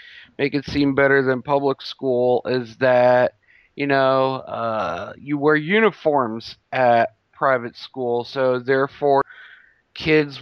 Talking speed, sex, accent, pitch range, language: 120 wpm, male, American, 120-140 Hz, English